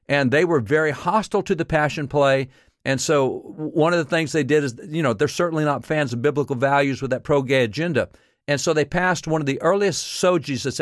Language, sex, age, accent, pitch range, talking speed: English, male, 50-69, American, 135-160 Hz, 225 wpm